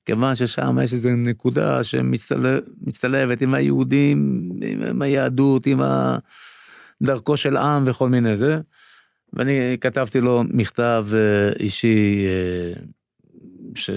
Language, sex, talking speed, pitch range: Hebrew, male, 105 wpm, 105-130 Hz